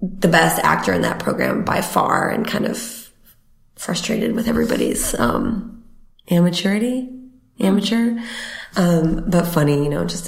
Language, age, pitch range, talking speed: English, 20-39, 160-195 Hz, 135 wpm